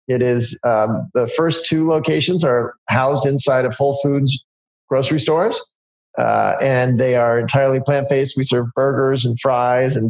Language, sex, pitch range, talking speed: English, male, 120-140 Hz, 160 wpm